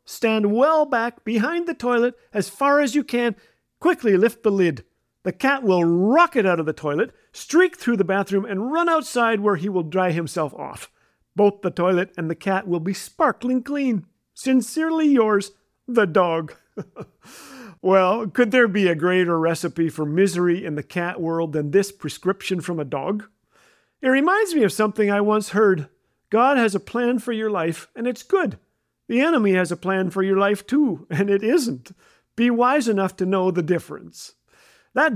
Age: 50-69